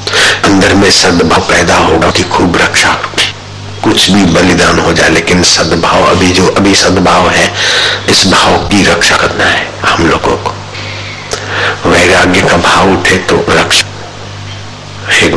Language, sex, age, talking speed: Hindi, male, 60-79, 140 wpm